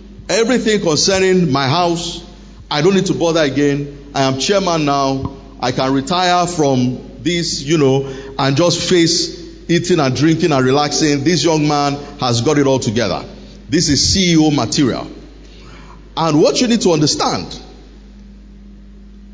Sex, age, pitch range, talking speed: male, 50-69, 140-200 Hz, 145 wpm